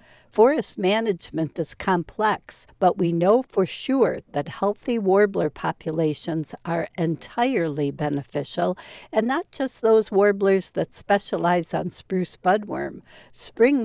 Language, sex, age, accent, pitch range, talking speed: English, female, 60-79, American, 165-205 Hz, 115 wpm